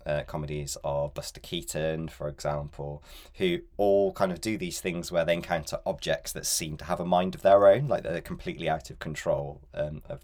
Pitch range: 75-85 Hz